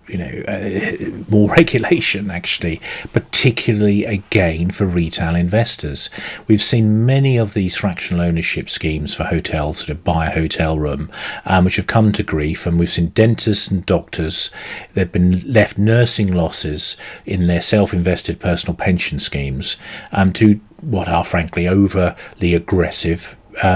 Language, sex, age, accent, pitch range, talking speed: English, male, 40-59, British, 85-100 Hz, 145 wpm